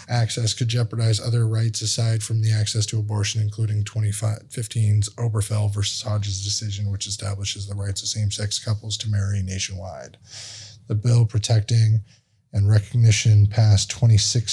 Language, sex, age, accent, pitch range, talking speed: English, male, 20-39, American, 105-115 Hz, 140 wpm